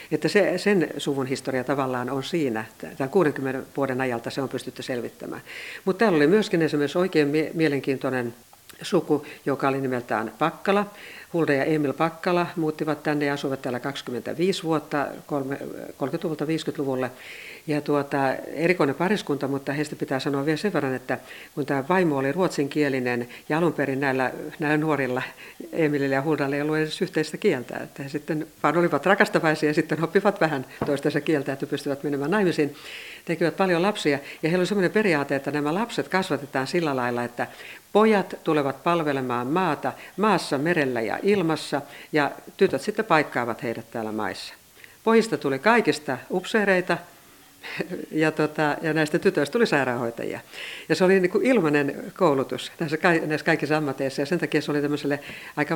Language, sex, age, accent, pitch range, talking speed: Finnish, female, 60-79, native, 135-170 Hz, 155 wpm